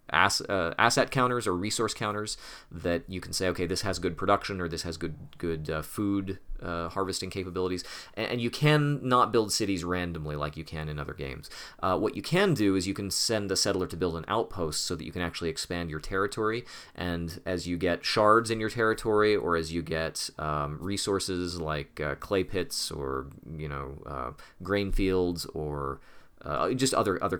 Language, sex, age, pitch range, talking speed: English, male, 30-49, 80-100 Hz, 200 wpm